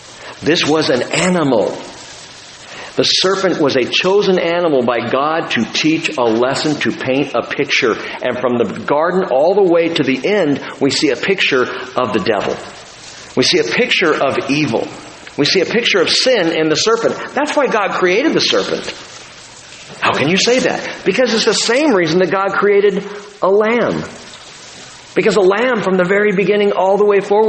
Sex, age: male, 50-69